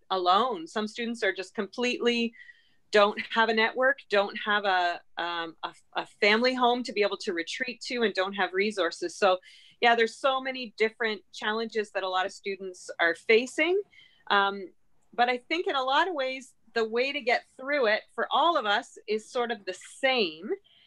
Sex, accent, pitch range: female, American, 200-260 Hz